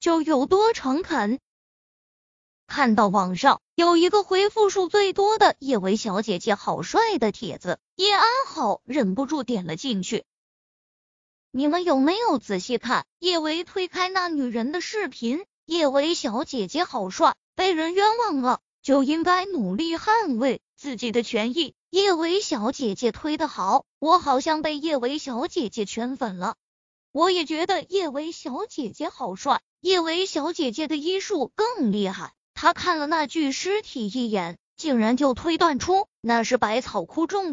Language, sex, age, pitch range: Chinese, female, 20-39, 245-355 Hz